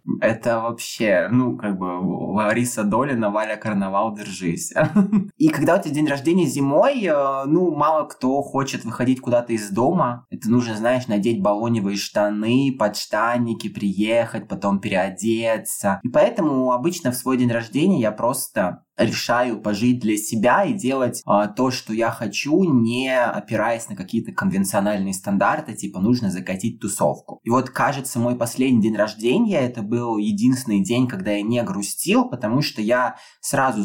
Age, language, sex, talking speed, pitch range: 20-39, Russian, male, 145 wpm, 105-140 Hz